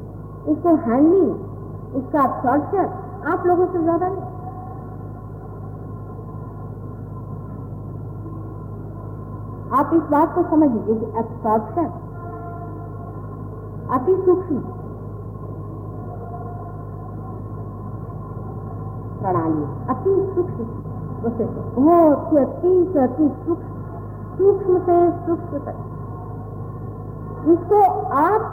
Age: 50-69